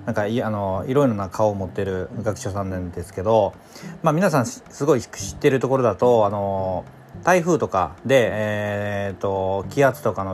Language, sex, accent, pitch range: Japanese, male, native, 95-125 Hz